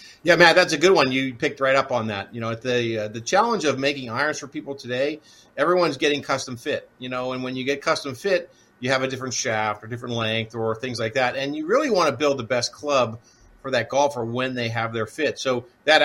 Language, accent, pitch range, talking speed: English, American, 115-140 Hz, 250 wpm